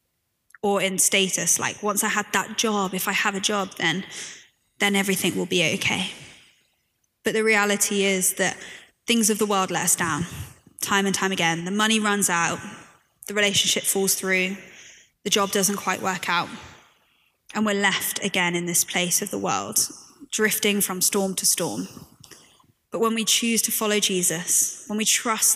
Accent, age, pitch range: British, 20-39, 185-205 Hz